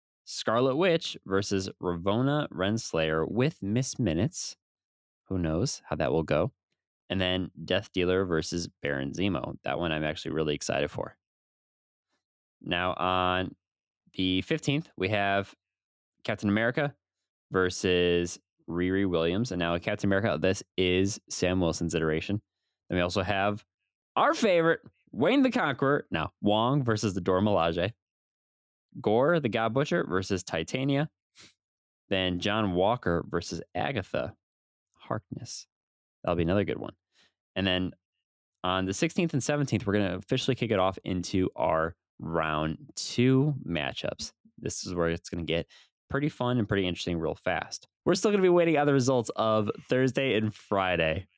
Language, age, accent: English, 20-39, American